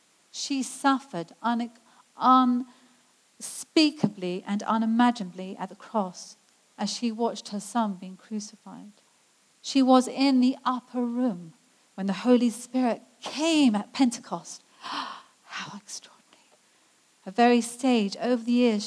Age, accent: 40-59, British